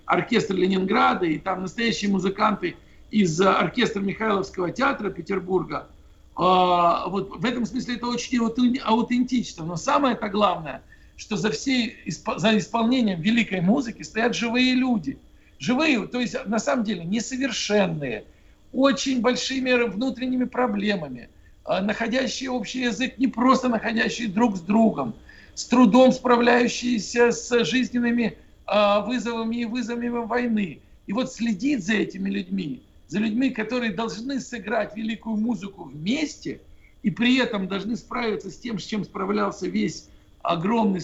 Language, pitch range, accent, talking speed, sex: Russian, 195-245 Hz, native, 125 wpm, male